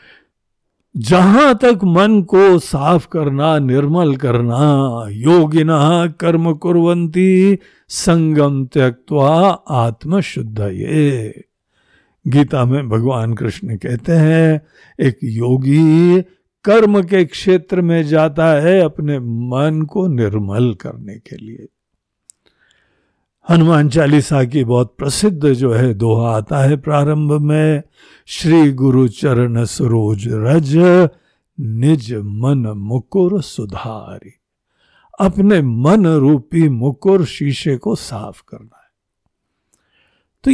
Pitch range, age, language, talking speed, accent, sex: 130-175 Hz, 60-79, Hindi, 100 wpm, native, male